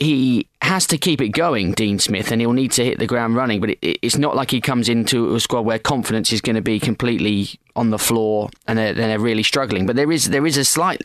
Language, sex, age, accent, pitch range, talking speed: English, male, 20-39, British, 105-130 Hz, 255 wpm